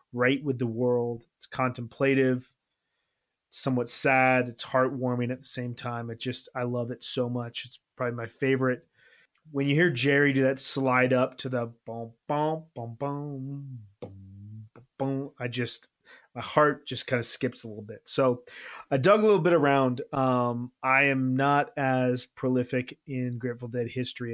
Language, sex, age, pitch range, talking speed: English, male, 30-49, 120-135 Hz, 175 wpm